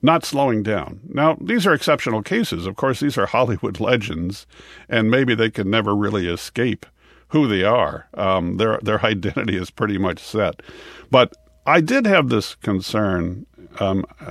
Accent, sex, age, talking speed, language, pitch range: American, male, 50-69, 165 wpm, English, 95-120 Hz